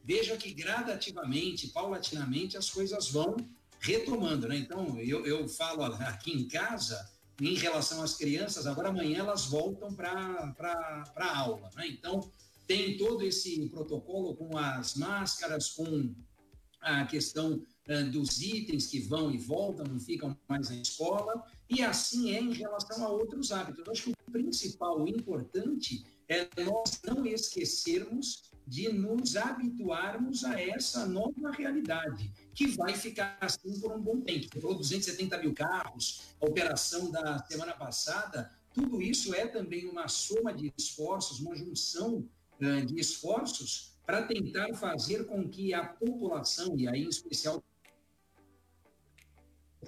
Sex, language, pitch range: male, Portuguese, 145-215 Hz